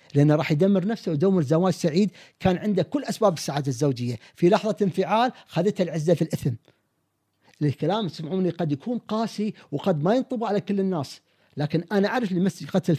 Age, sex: 50-69, male